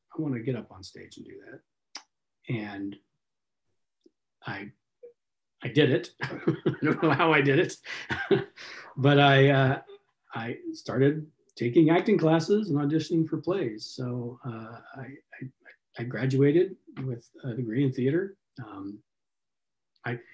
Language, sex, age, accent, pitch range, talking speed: English, male, 50-69, American, 120-150 Hz, 135 wpm